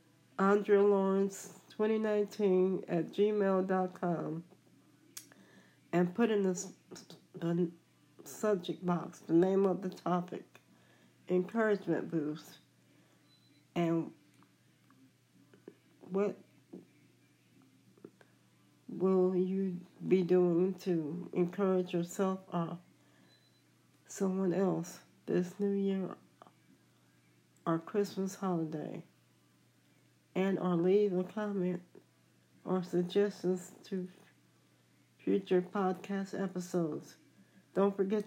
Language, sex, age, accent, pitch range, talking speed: English, female, 60-79, American, 175-195 Hz, 75 wpm